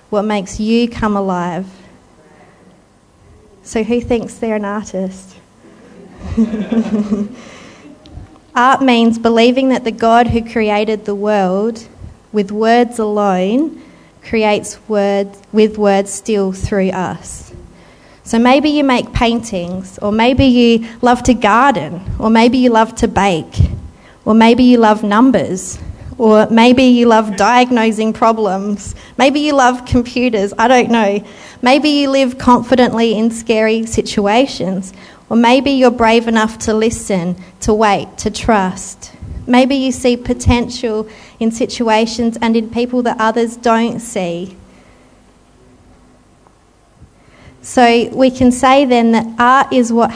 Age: 30-49